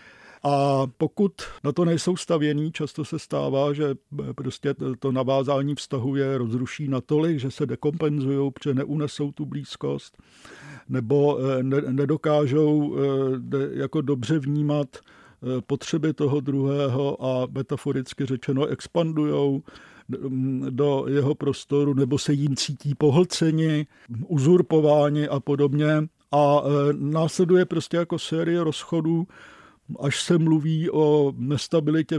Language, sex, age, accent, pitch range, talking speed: Czech, male, 50-69, native, 130-150 Hz, 110 wpm